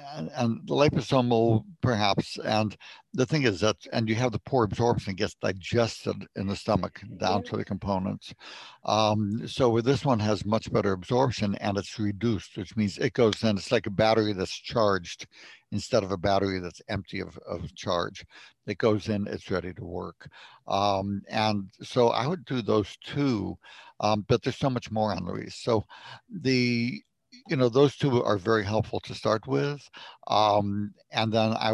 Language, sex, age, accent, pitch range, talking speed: English, male, 60-79, American, 100-120 Hz, 175 wpm